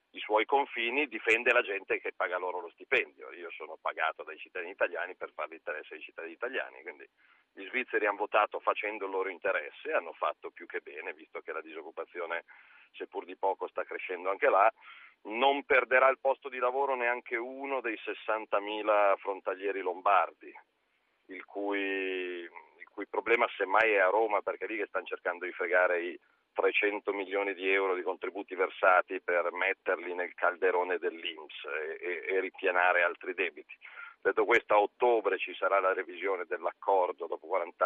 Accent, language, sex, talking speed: native, Italian, male, 165 wpm